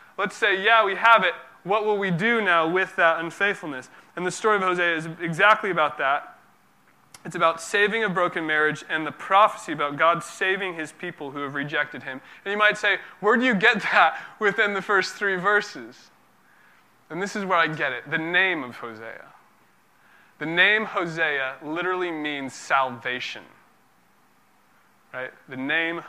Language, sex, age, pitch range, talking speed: English, male, 20-39, 135-185 Hz, 170 wpm